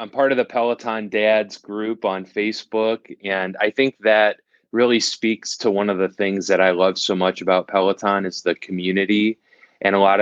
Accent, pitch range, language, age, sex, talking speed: American, 95-105 Hz, English, 20-39, male, 195 wpm